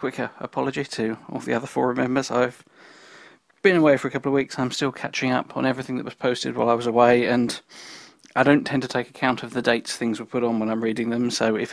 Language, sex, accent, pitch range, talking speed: English, male, British, 120-135 Hz, 250 wpm